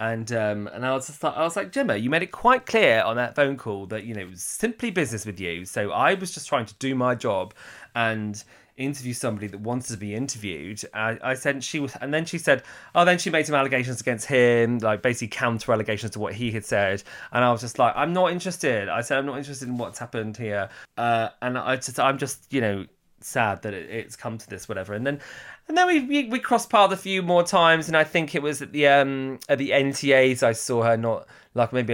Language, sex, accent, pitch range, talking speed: English, male, British, 110-145 Hz, 250 wpm